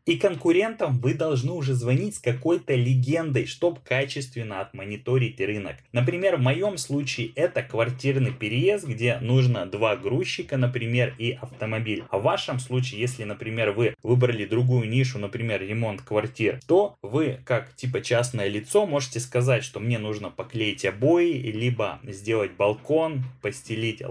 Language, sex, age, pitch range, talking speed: Russian, male, 20-39, 115-140 Hz, 140 wpm